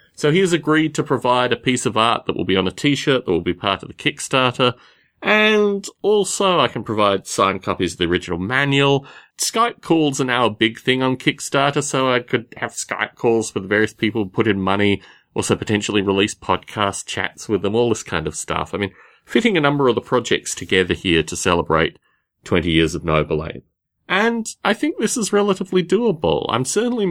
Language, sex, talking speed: English, male, 205 wpm